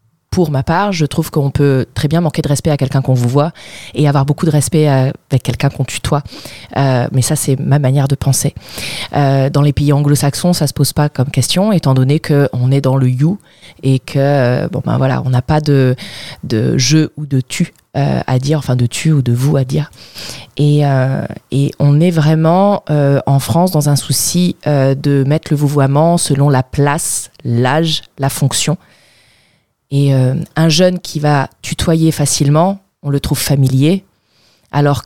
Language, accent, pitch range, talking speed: French, French, 135-155 Hz, 205 wpm